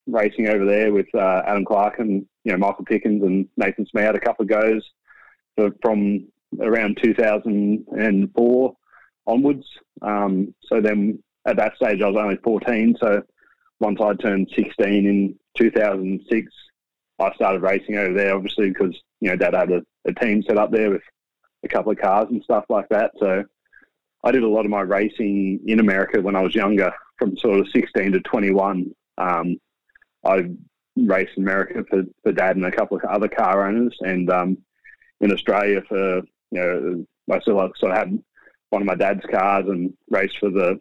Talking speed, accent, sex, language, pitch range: 180 wpm, Australian, male, English, 95-110 Hz